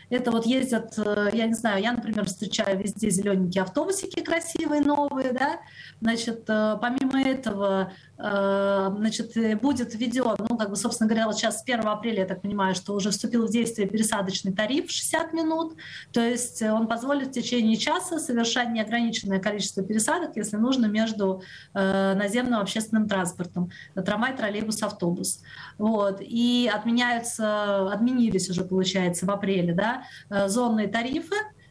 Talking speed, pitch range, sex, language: 140 wpm, 205-250 Hz, female, Russian